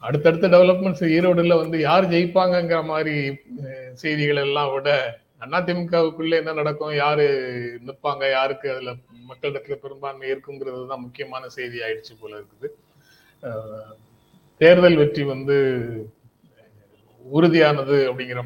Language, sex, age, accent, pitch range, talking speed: Tamil, male, 30-49, native, 125-160 Hz, 100 wpm